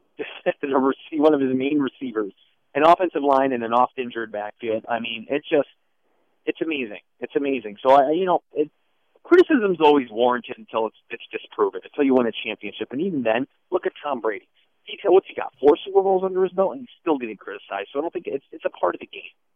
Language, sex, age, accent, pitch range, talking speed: English, male, 40-59, American, 115-180 Hz, 215 wpm